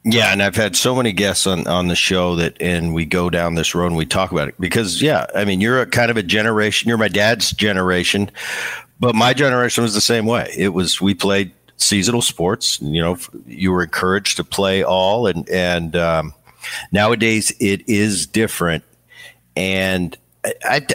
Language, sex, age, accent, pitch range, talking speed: English, male, 50-69, American, 85-110 Hz, 195 wpm